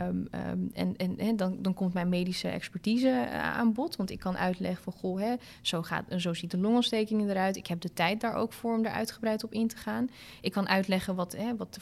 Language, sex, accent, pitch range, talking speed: Dutch, female, Dutch, 190-230 Hz, 240 wpm